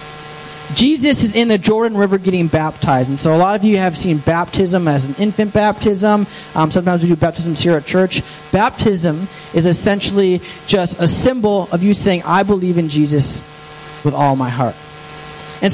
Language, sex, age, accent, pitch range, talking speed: English, male, 20-39, American, 150-205 Hz, 180 wpm